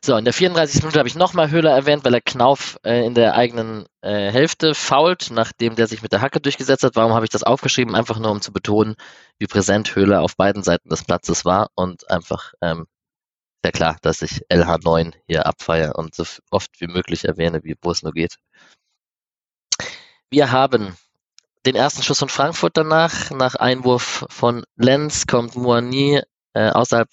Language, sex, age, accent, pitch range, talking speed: German, male, 20-39, German, 95-130 Hz, 185 wpm